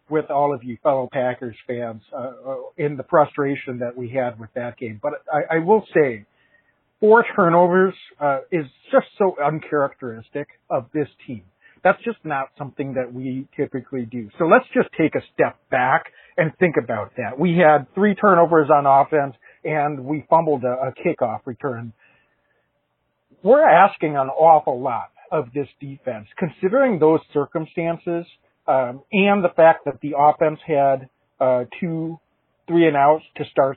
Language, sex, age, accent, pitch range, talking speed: English, male, 50-69, American, 135-165 Hz, 160 wpm